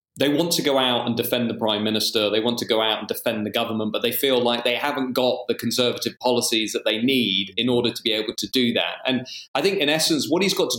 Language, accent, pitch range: English, British, 110-140 Hz